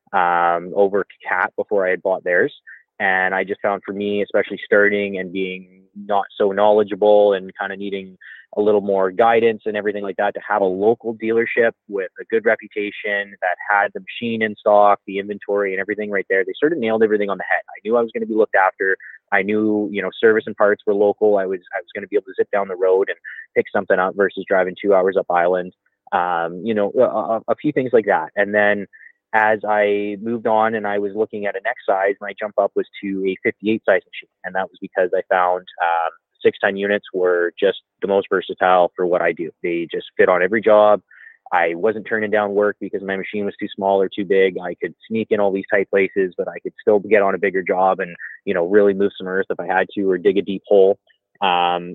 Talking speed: 240 wpm